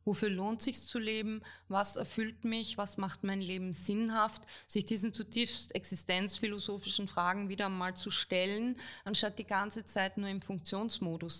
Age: 20-39